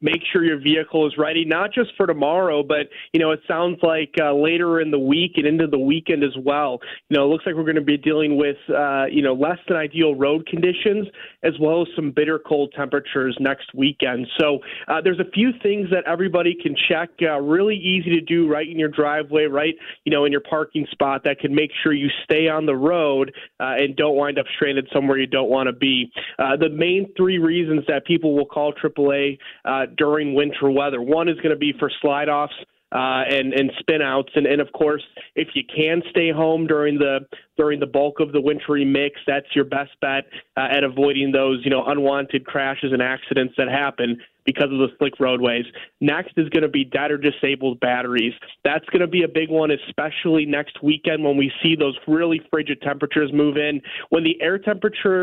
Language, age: English, 30-49